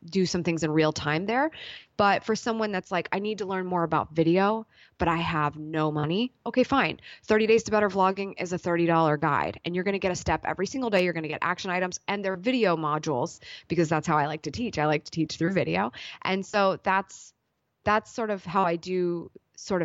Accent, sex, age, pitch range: American, female, 20-39, 160-195 Hz